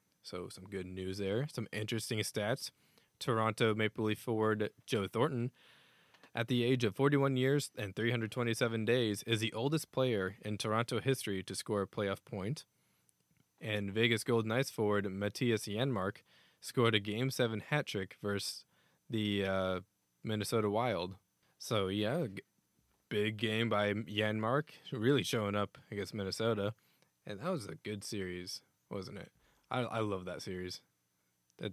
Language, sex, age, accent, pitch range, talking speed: English, male, 10-29, American, 100-120 Hz, 145 wpm